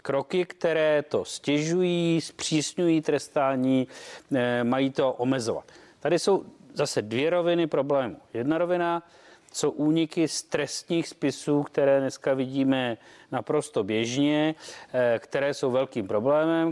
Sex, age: male, 40-59